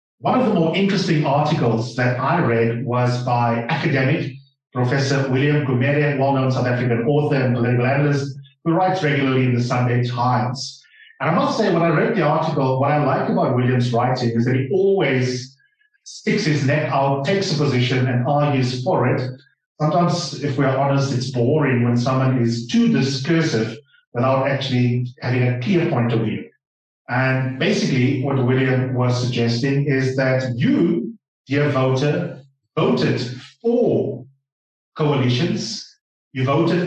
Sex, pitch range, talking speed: male, 125-155 Hz, 155 wpm